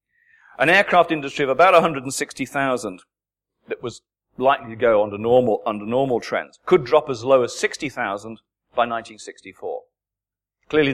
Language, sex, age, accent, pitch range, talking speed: English, male, 40-59, British, 120-170 Hz, 135 wpm